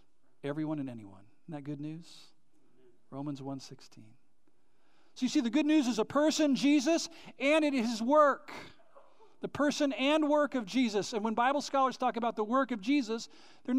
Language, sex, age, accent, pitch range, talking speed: English, male, 50-69, American, 165-255 Hz, 175 wpm